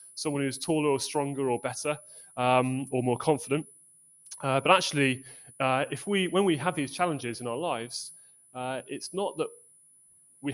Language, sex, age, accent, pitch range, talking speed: English, male, 30-49, British, 125-155 Hz, 170 wpm